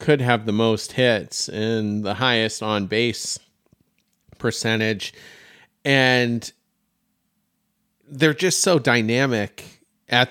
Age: 40-59